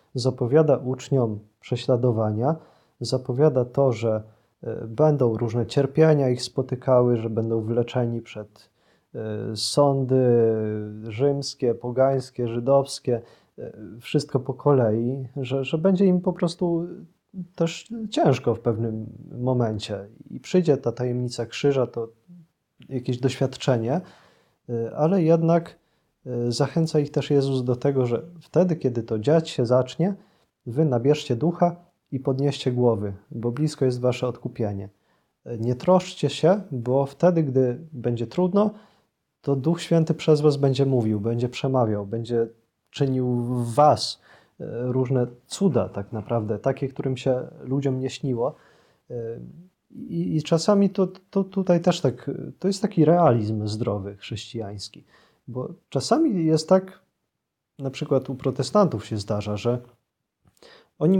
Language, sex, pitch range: Polish, male, 120-155 Hz